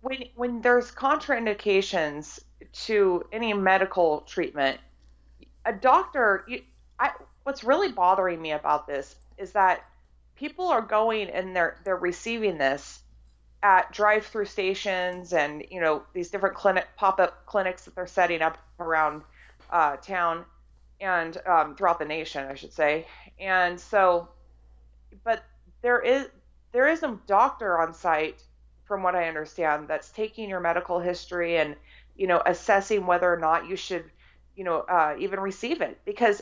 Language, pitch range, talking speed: English, 160-220 Hz, 150 wpm